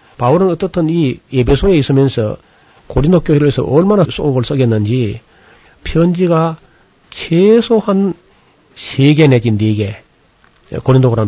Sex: male